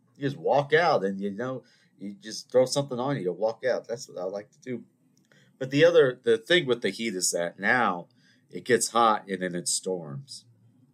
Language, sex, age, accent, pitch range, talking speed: English, male, 40-59, American, 120-155 Hz, 220 wpm